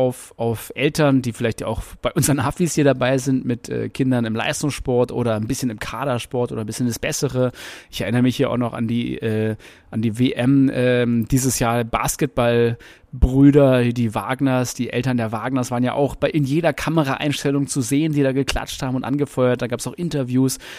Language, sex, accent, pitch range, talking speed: German, male, German, 120-145 Hz, 200 wpm